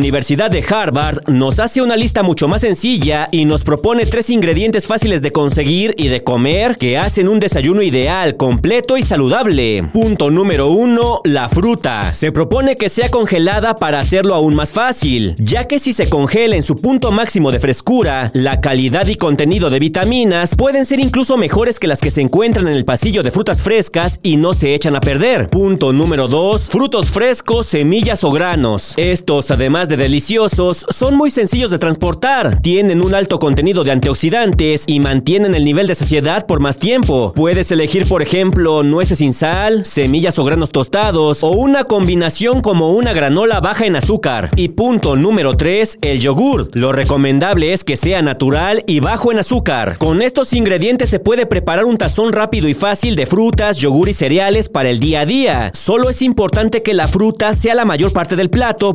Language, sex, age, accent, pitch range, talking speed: Spanish, male, 40-59, Mexican, 145-220 Hz, 185 wpm